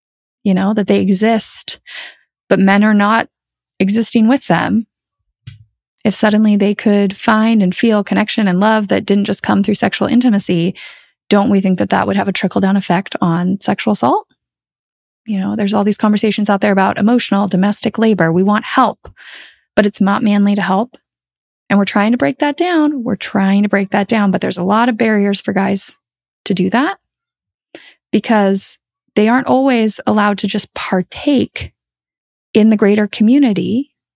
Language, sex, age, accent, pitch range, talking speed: English, female, 20-39, American, 195-235 Hz, 175 wpm